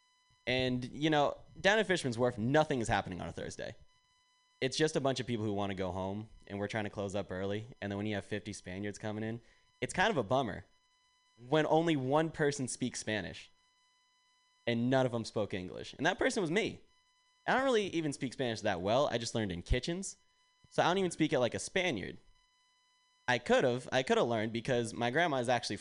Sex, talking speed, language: male, 225 wpm, English